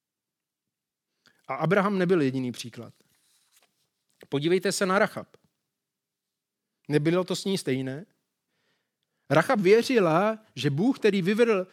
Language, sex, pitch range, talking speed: Czech, male, 150-215 Hz, 100 wpm